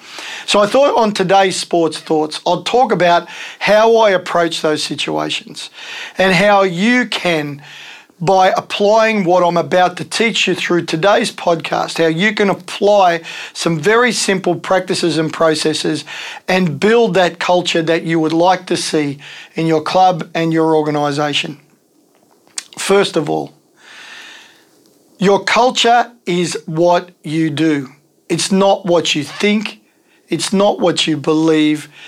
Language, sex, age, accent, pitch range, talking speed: English, male, 40-59, Australian, 160-195 Hz, 140 wpm